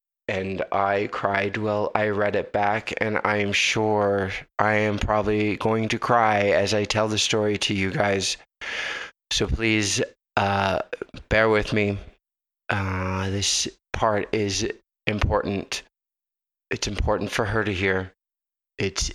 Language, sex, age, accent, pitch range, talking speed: English, male, 20-39, American, 100-110 Hz, 135 wpm